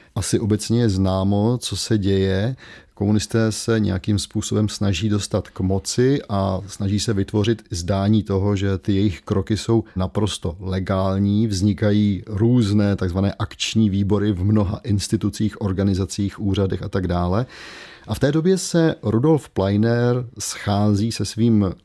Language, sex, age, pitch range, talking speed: Czech, male, 30-49, 95-110 Hz, 140 wpm